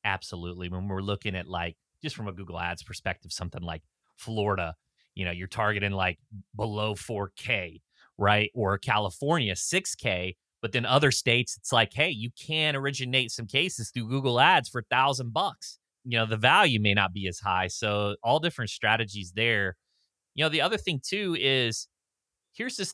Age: 30-49